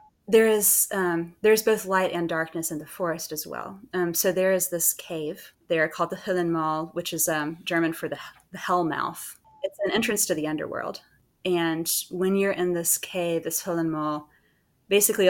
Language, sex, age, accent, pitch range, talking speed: English, female, 20-39, American, 160-200 Hz, 185 wpm